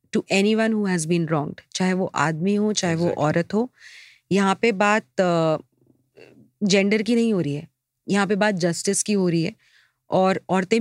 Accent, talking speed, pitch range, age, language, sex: native, 185 wpm, 180-215 Hz, 30-49, Hindi, female